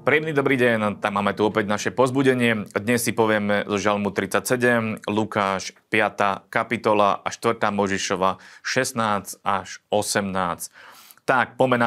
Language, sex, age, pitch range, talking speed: Slovak, male, 30-49, 105-130 Hz, 130 wpm